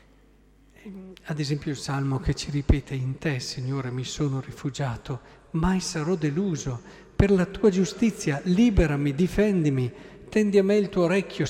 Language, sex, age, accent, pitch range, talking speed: Italian, male, 50-69, native, 140-185 Hz, 145 wpm